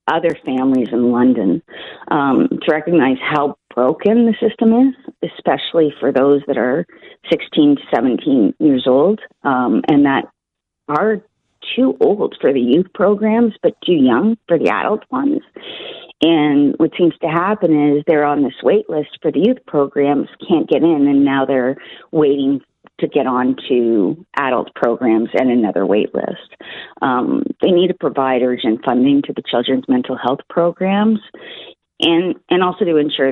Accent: American